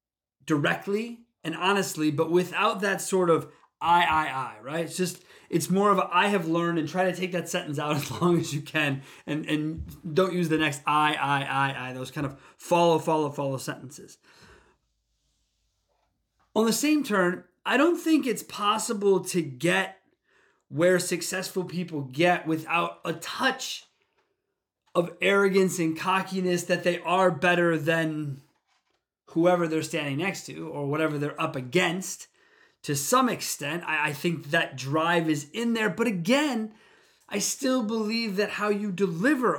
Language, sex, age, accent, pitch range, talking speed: English, male, 30-49, American, 155-200 Hz, 160 wpm